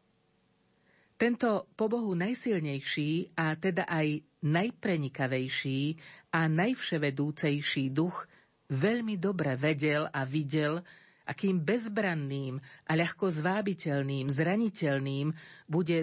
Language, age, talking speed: Slovak, 50-69, 85 wpm